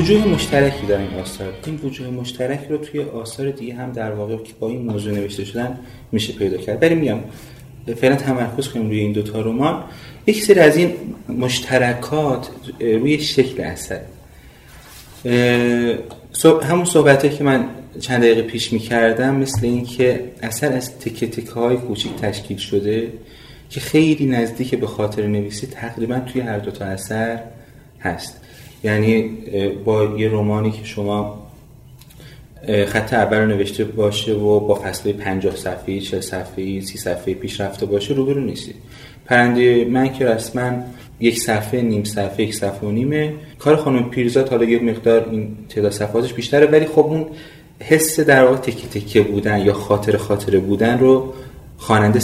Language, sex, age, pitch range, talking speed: Persian, male, 30-49, 105-130 Hz, 150 wpm